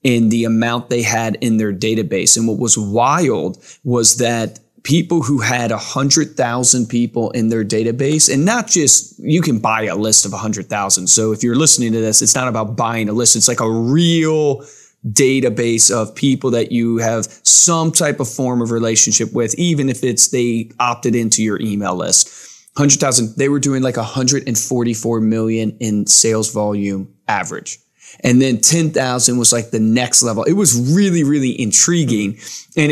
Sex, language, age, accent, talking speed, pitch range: male, English, 20-39, American, 175 wpm, 115-140 Hz